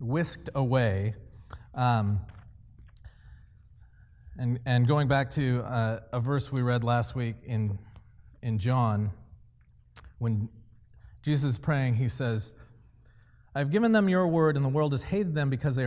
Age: 30-49